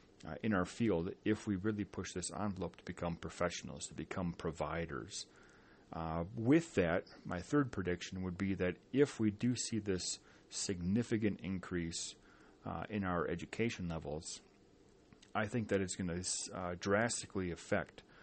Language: English